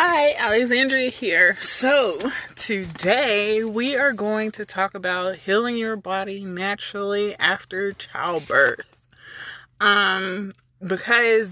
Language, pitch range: English, 160-200 Hz